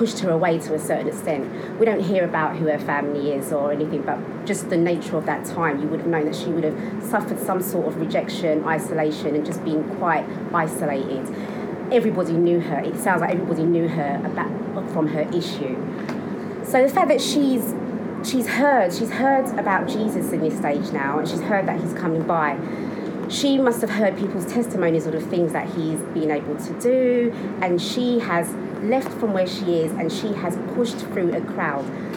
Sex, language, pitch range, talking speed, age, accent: female, English, 170-225 Hz, 200 wpm, 30-49, British